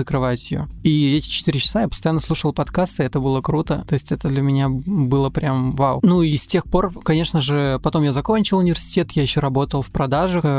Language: Russian